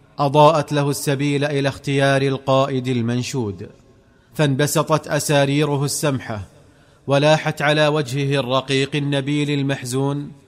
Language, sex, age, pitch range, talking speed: Arabic, male, 30-49, 135-150 Hz, 90 wpm